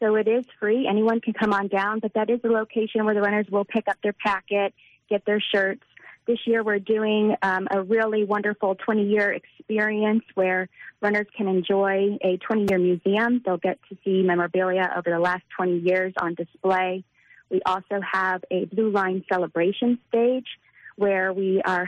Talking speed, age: 180 wpm, 30-49